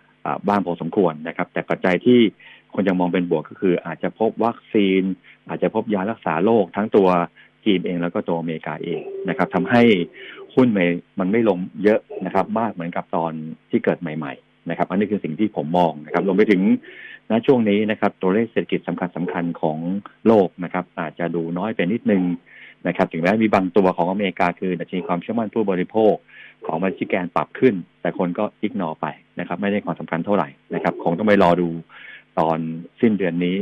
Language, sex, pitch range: Thai, male, 85-105 Hz